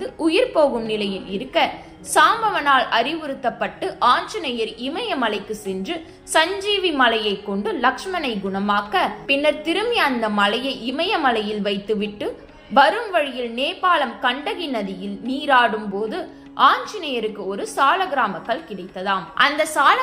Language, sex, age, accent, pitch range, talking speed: Tamil, female, 20-39, native, 215-310 Hz, 85 wpm